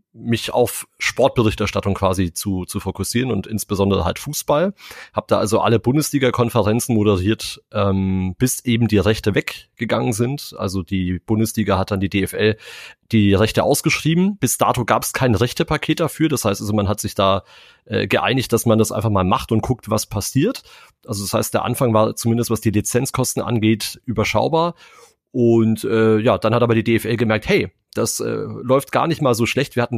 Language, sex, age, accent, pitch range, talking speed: German, male, 30-49, German, 105-130 Hz, 185 wpm